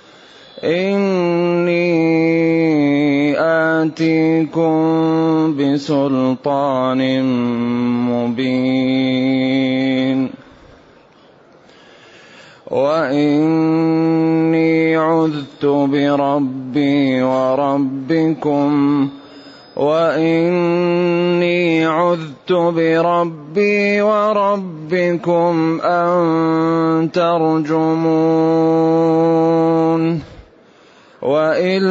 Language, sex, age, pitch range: Arabic, male, 30-49, 145-170 Hz